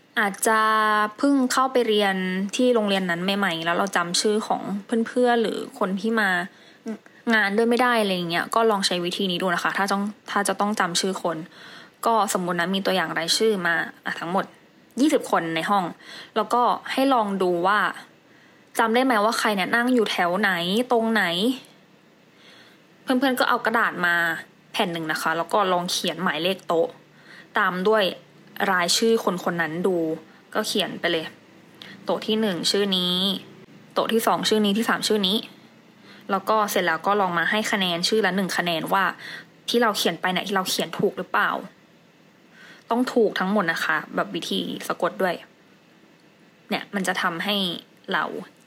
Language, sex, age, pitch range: English, female, 20-39, 180-225 Hz